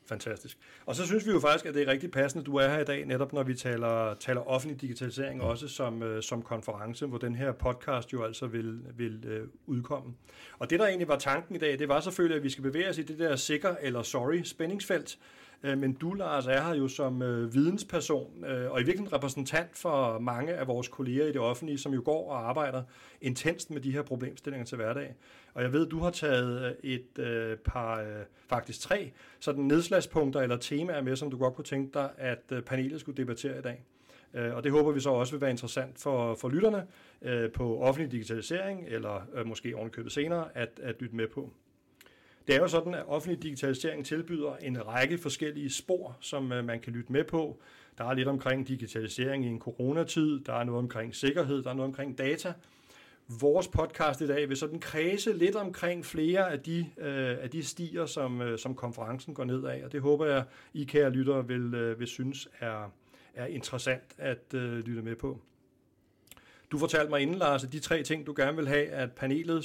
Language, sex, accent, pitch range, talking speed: Danish, male, native, 125-155 Hz, 205 wpm